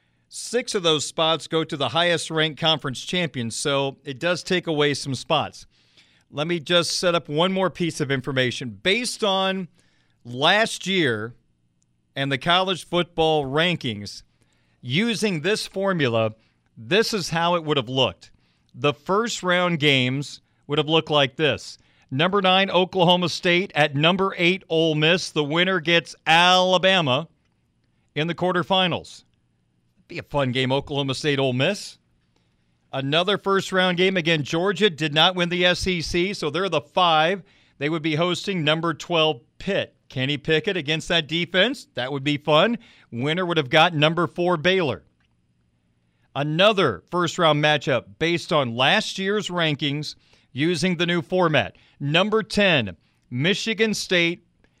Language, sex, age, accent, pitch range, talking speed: English, male, 40-59, American, 130-180 Hz, 150 wpm